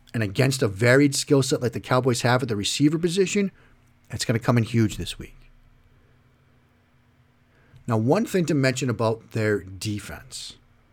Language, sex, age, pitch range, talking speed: English, male, 40-59, 110-140 Hz, 165 wpm